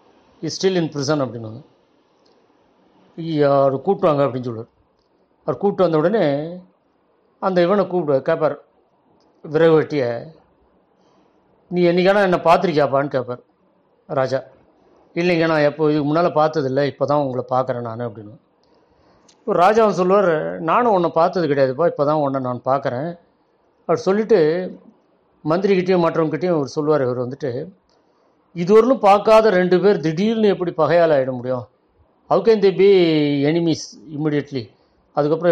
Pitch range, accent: 140-185 Hz, native